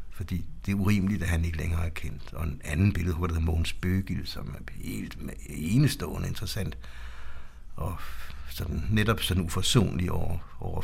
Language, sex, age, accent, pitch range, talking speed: Danish, male, 60-79, native, 80-105 Hz, 175 wpm